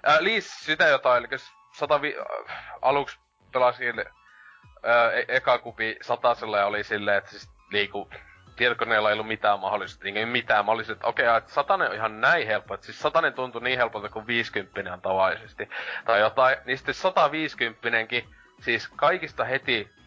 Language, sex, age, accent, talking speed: Finnish, male, 20-39, native, 150 wpm